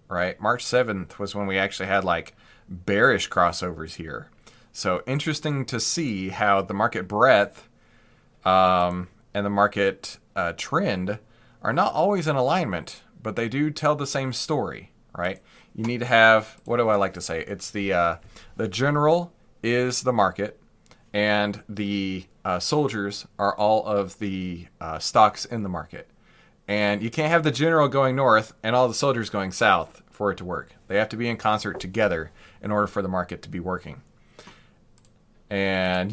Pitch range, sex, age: 100-135 Hz, male, 30-49